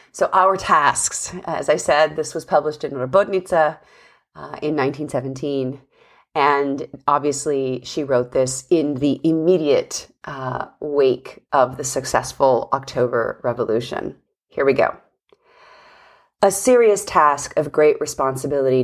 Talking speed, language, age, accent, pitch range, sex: 120 wpm, English, 40-59, American, 135-175 Hz, female